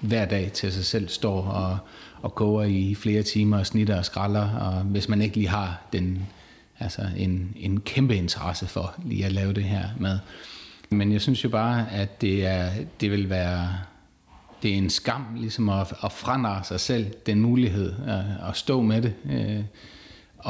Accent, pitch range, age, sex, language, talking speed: native, 95-110 Hz, 30-49, male, Danish, 185 wpm